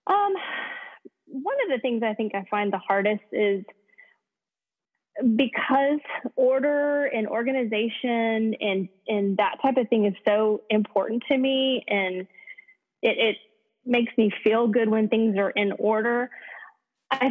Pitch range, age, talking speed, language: 200-265 Hz, 20-39, 140 wpm, English